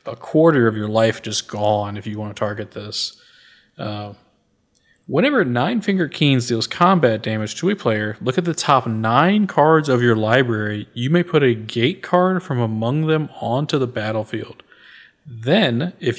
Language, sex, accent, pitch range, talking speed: English, male, American, 110-145 Hz, 175 wpm